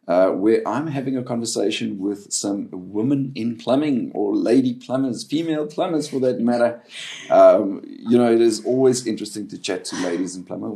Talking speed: 180 wpm